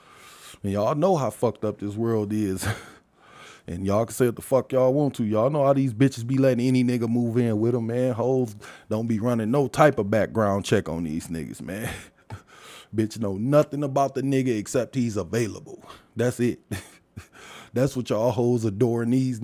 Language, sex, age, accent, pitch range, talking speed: English, male, 20-39, American, 115-165 Hz, 195 wpm